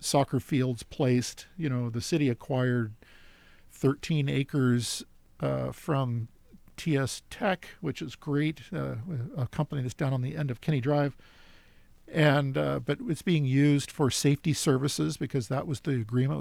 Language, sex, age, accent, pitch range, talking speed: English, male, 50-69, American, 125-155 Hz, 155 wpm